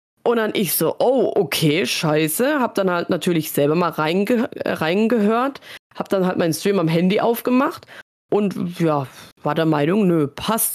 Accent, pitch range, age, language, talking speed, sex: German, 175-220 Hz, 20-39, German, 165 wpm, female